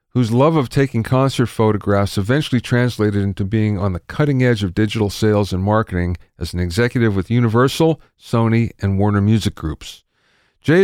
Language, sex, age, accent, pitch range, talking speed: English, male, 40-59, American, 100-135 Hz, 165 wpm